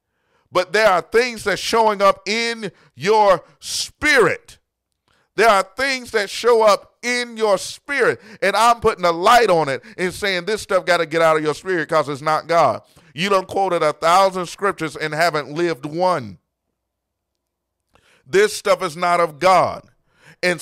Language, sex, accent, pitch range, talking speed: English, male, American, 165-210 Hz, 170 wpm